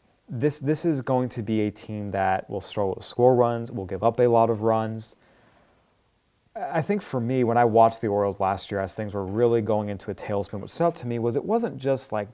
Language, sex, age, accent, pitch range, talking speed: English, male, 30-49, American, 105-140 Hz, 245 wpm